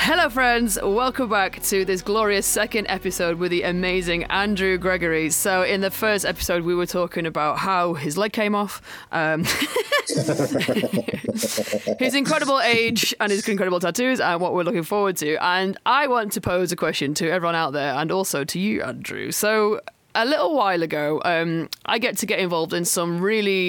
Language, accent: English, British